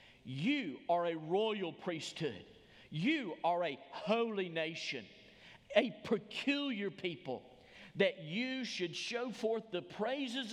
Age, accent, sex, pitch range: 50-69, American, male, 140-210 Hz